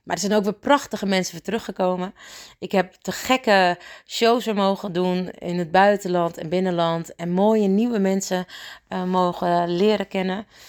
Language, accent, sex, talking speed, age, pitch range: Dutch, Dutch, female, 170 wpm, 30-49, 175-210 Hz